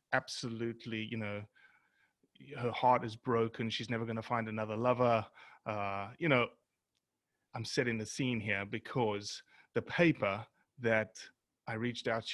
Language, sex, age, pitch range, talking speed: English, male, 30-49, 110-140 Hz, 145 wpm